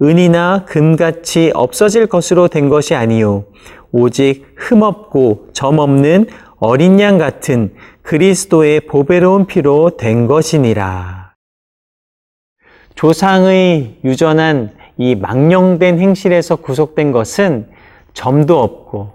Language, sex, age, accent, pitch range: Korean, male, 40-59, native, 125-185 Hz